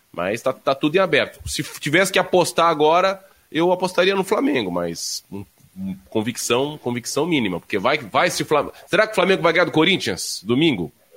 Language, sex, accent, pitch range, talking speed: Portuguese, male, Brazilian, 110-170 Hz, 190 wpm